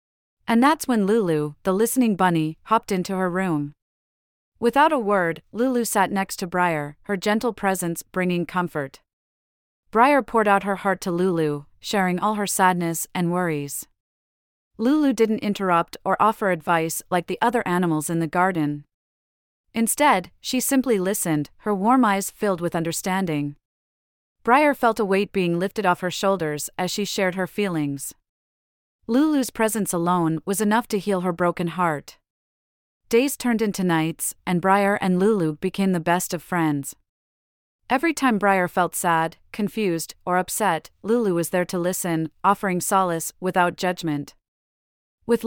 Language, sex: English, female